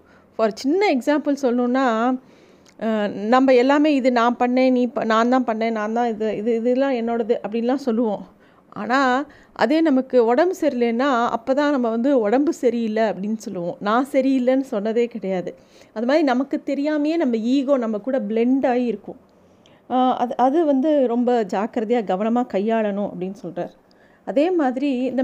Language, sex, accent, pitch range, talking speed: Tamil, female, native, 220-265 Hz, 145 wpm